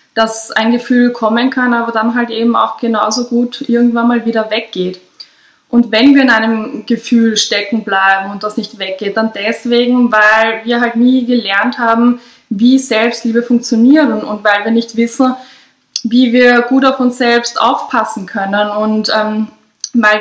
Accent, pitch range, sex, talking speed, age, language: German, 220-245 Hz, female, 165 wpm, 20-39, German